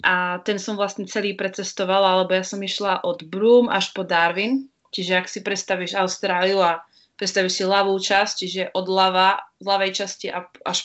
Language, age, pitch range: English, 20-39, 185-215 Hz